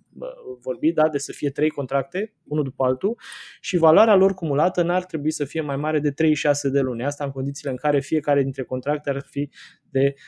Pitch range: 135-165 Hz